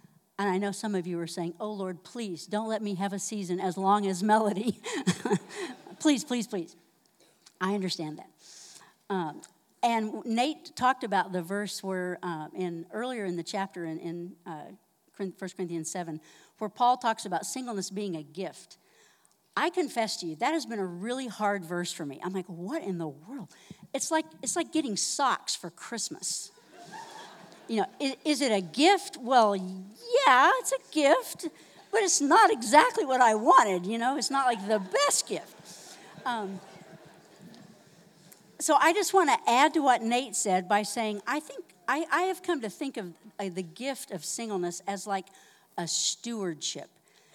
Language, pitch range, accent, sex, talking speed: English, 185-255 Hz, American, female, 175 wpm